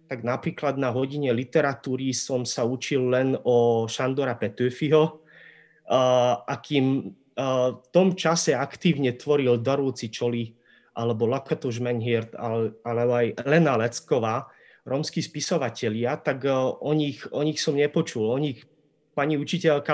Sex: male